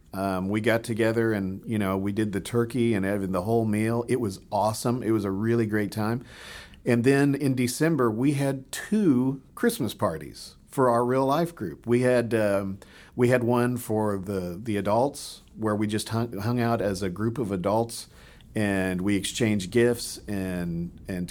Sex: male